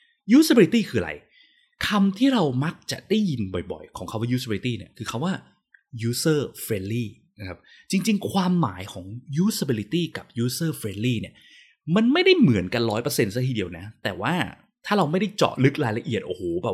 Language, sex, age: Thai, male, 20-39